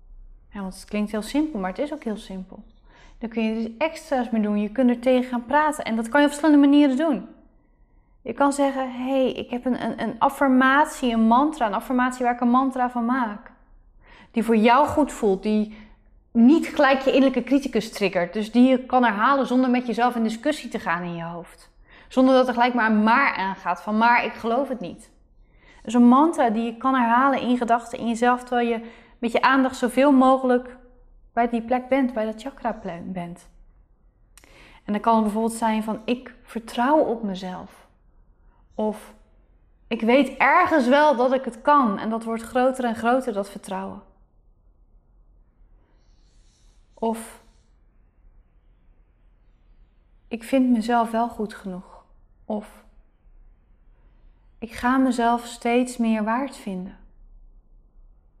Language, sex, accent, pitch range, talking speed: Dutch, female, Dutch, 220-260 Hz, 170 wpm